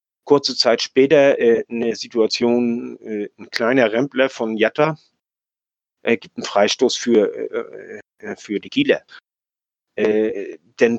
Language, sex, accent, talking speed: German, male, German, 130 wpm